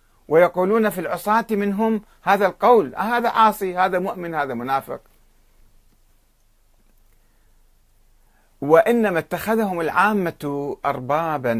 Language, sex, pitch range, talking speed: Arabic, male, 110-185 Hz, 85 wpm